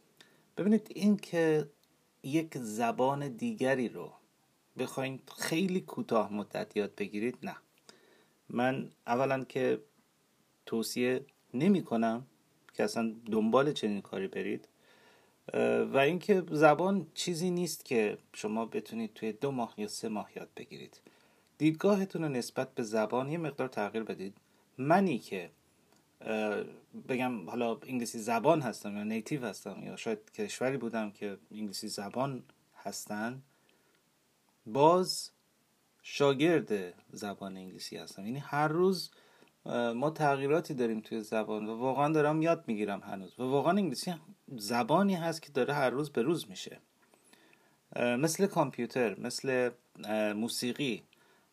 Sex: male